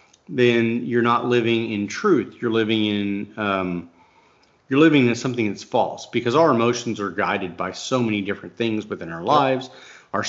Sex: male